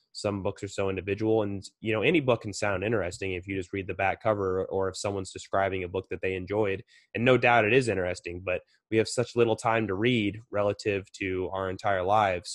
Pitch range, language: 95-115 Hz, English